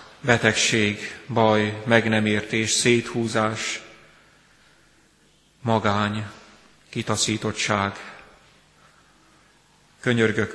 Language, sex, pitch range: Hungarian, male, 105-115 Hz